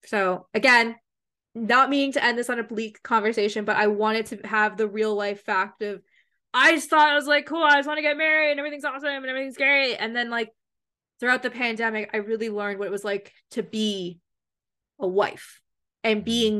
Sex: female